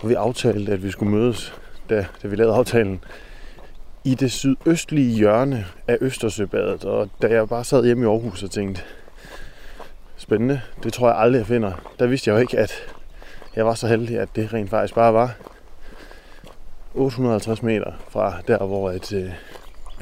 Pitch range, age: 100-125 Hz, 20-39